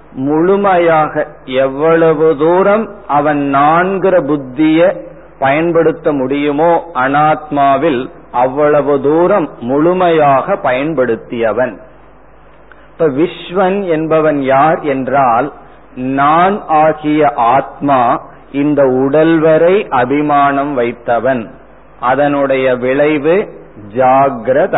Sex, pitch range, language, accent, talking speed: male, 140-165 Hz, Tamil, native, 70 wpm